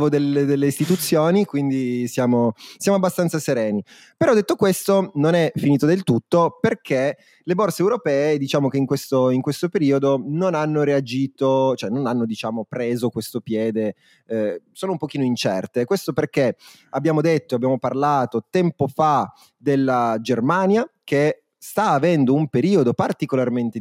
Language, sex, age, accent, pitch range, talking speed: Italian, male, 30-49, native, 130-180 Hz, 145 wpm